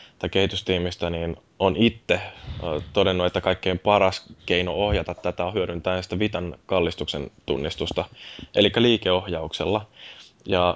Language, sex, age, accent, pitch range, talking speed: Finnish, male, 10-29, native, 85-100 Hz, 105 wpm